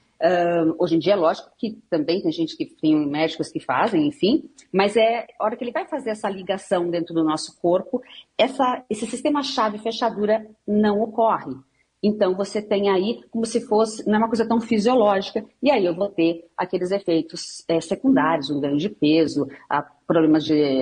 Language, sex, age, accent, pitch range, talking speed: Portuguese, female, 40-59, Brazilian, 165-240 Hz, 190 wpm